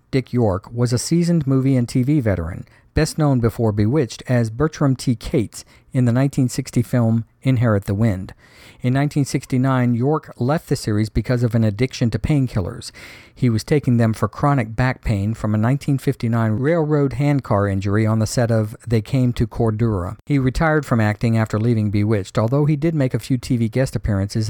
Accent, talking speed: American, 180 wpm